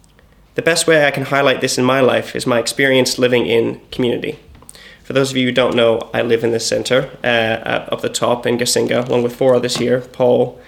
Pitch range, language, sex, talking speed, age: 120-145 Hz, English, male, 225 wpm, 20-39